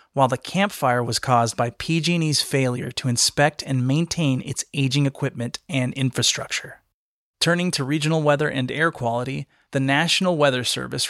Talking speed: 150 wpm